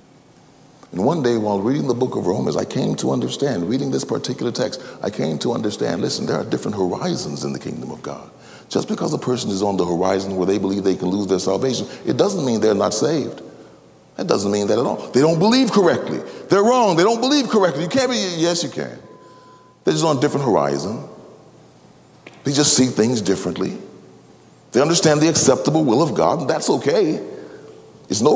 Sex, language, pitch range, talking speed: male, English, 130-205 Hz, 210 wpm